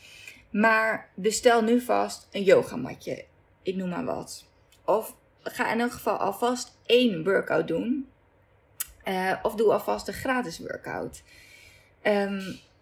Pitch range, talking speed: 190-245 Hz, 125 wpm